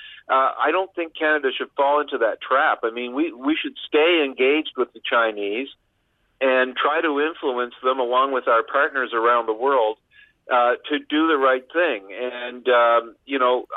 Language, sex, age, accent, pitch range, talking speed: English, male, 50-69, American, 120-155 Hz, 185 wpm